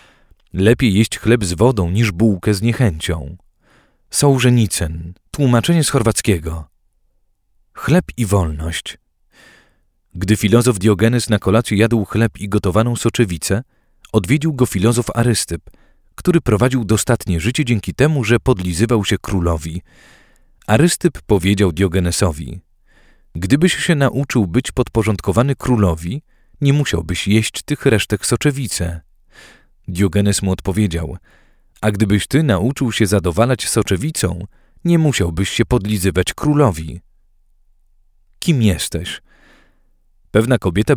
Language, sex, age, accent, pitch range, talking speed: Polish, male, 40-59, native, 90-120 Hz, 110 wpm